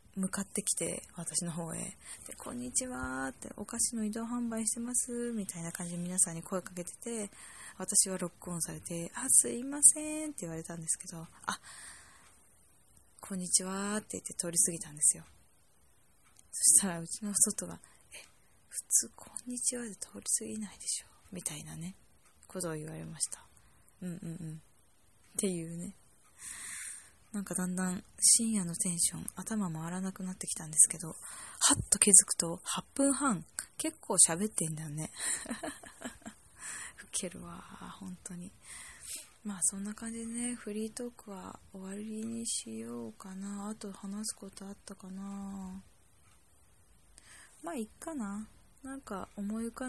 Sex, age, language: female, 20-39, Japanese